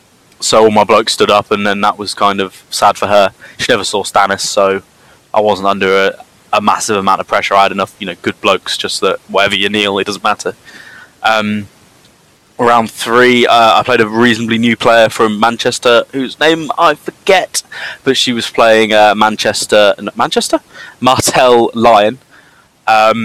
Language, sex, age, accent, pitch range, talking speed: English, male, 20-39, British, 100-120 Hz, 180 wpm